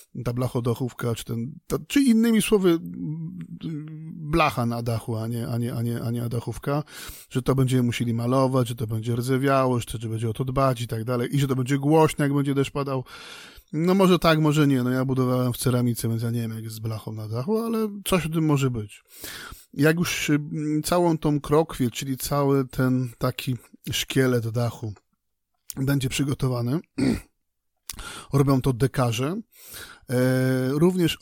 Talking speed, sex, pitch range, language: 165 wpm, male, 120-150 Hz, Polish